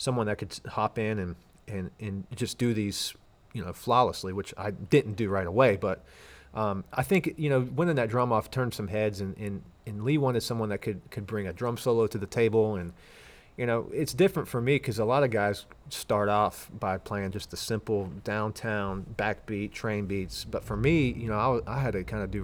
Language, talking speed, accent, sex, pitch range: English, 225 wpm, American, male, 100-120 Hz